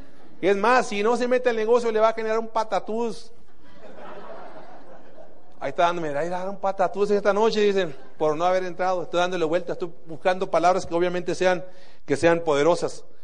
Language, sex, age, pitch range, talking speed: Spanish, male, 40-59, 160-210 Hz, 180 wpm